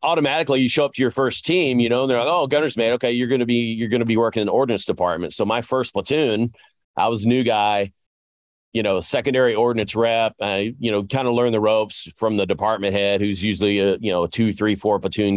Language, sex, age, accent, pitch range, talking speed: English, male, 40-59, American, 100-125 Hz, 245 wpm